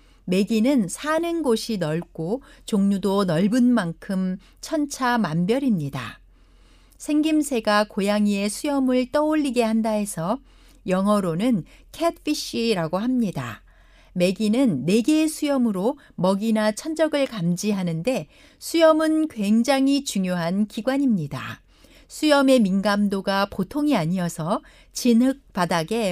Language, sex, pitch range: Korean, female, 190-275 Hz